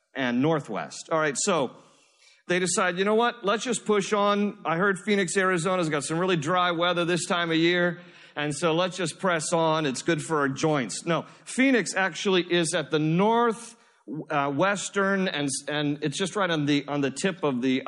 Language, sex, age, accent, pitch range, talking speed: English, male, 40-59, American, 130-175 Hz, 200 wpm